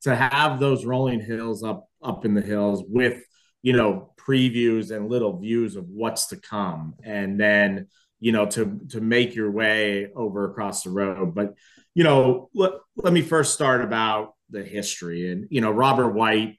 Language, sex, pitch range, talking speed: English, male, 100-120 Hz, 180 wpm